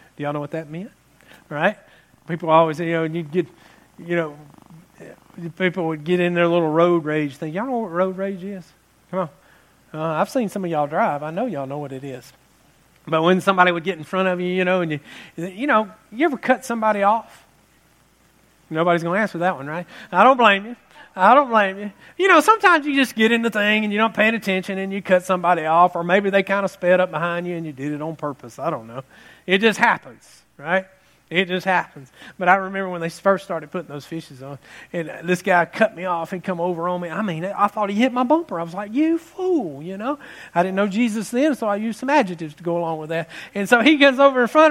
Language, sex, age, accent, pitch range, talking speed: English, male, 40-59, American, 170-225 Hz, 245 wpm